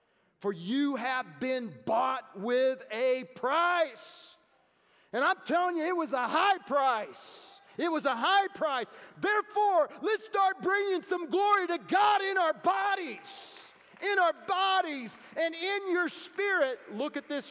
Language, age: English, 40-59